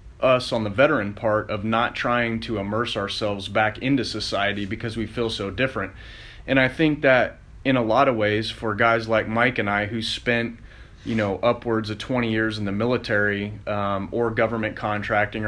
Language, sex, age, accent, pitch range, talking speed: English, male, 30-49, American, 105-115 Hz, 190 wpm